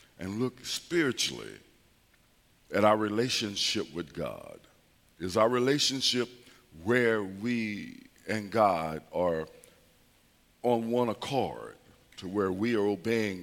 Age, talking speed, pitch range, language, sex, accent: 60-79, 105 wpm, 95-120 Hz, English, male, American